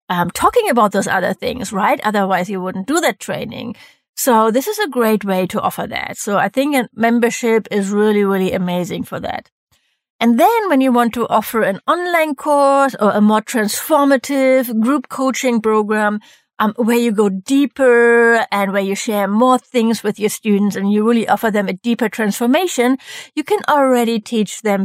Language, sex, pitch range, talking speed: English, female, 205-260 Hz, 185 wpm